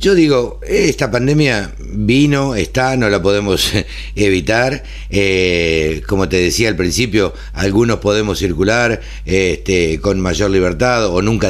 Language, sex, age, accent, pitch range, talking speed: Spanish, male, 60-79, Argentinian, 85-120 Hz, 125 wpm